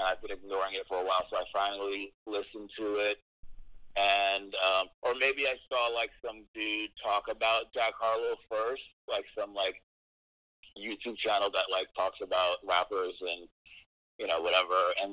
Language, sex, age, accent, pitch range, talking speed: English, male, 30-49, American, 90-120 Hz, 170 wpm